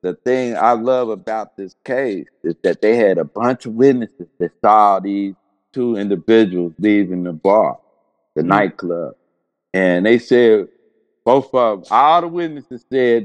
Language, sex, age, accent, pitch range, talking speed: English, male, 50-69, American, 110-145 Hz, 160 wpm